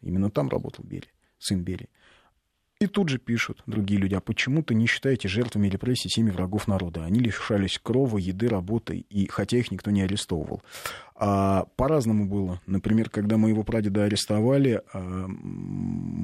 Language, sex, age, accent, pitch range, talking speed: Russian, male, 30-49, native, 90-115 Hz, 150 wpm